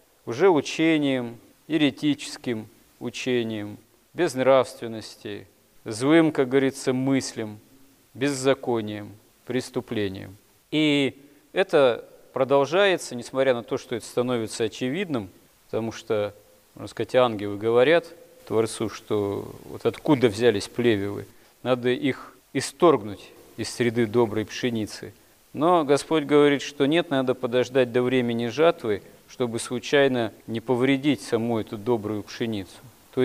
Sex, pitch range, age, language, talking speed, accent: male, 115-145 Hz, 40-59, Russian, 110 wpm, native